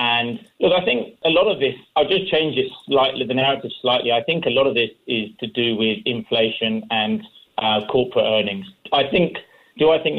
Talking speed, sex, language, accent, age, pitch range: 210 wpm, male, English, British, 40-59, 115-135 Hz